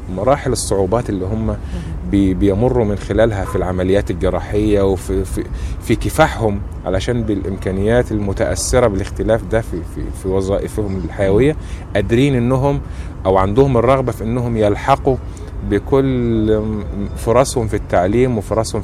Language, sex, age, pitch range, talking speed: Arabic, male, 30-49, 95-120 Hz, 120 wpm